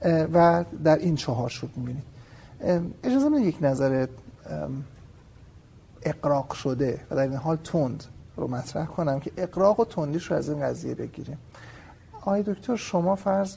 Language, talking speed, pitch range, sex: Persian, 145 wpm, 135-175 Hz, male